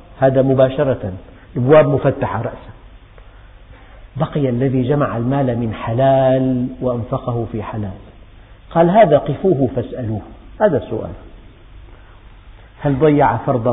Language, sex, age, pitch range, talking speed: Indonesian, male, 50-69, 110-150 Hz, 100 wpm